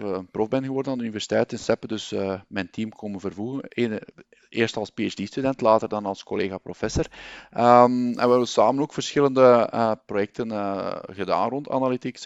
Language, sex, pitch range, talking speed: Dutch, male, 105-125 Hz, 180 wpm